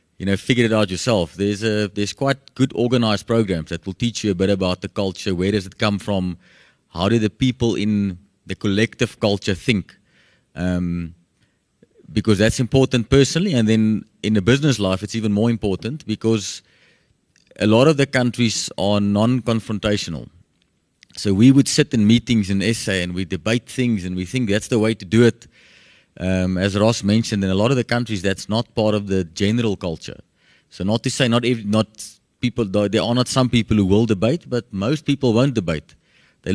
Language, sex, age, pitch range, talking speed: English, male, 30-49, 100-120 Hz, 195 wpm